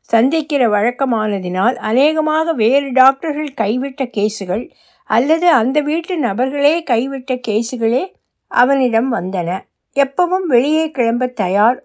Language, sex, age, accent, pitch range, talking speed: Tamil, female, 60-79, native, 205-270 Hz, 95 wpm